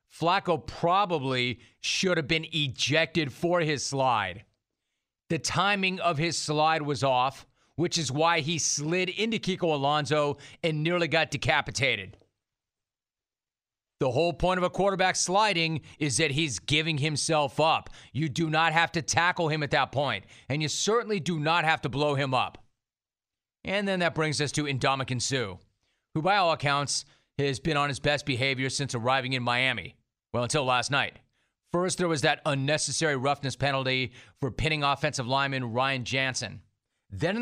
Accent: American